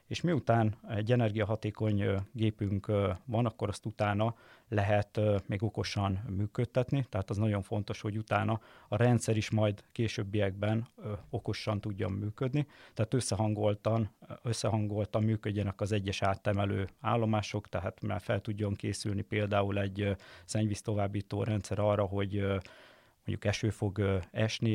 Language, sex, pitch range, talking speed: Hungarian, male, 100-115 Hz, 120 wpm